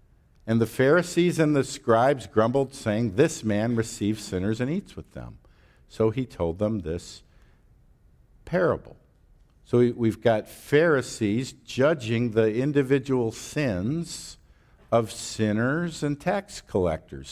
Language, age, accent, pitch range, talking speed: English, 50-69, American, 105-140 Hz, 120 wpm